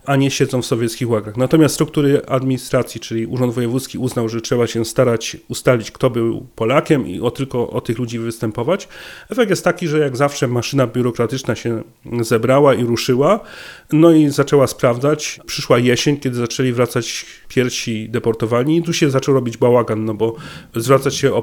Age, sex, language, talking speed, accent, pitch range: 40-59, male, Polish, 175 wpm, native, 115-140 Hz